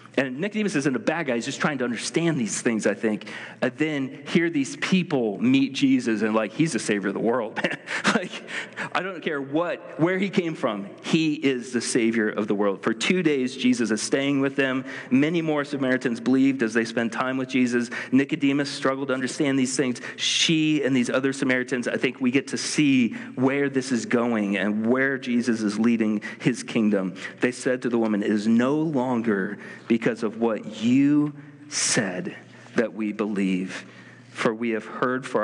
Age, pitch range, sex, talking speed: 40-59, 110-140 Hz, male, 190 wpm